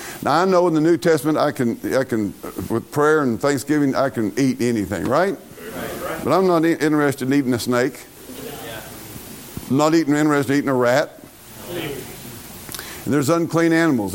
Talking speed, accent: 170 wpm, American